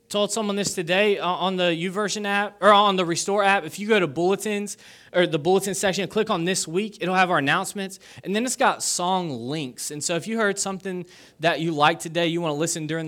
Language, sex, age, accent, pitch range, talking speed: English, male, 20-39, American, 120-180 Hz, 245 wpm